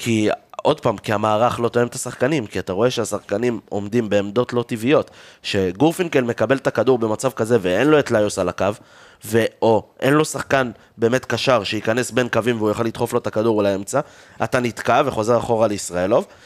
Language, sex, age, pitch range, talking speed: Hebrew, male, 30-49, 110-140 Hz, 185 wpm